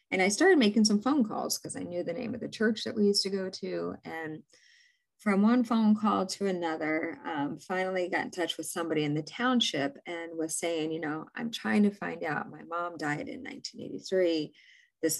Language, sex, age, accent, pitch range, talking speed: English, female, 30-49, American, 155-210 Hz, 215 wpm